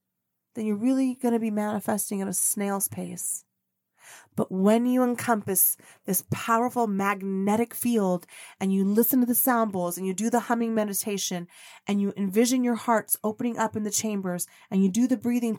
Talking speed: 180 wpm